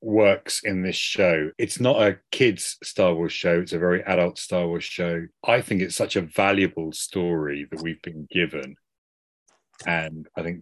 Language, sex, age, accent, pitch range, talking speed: English, male, 30-49, British, 85-110 Hz, 180 wpm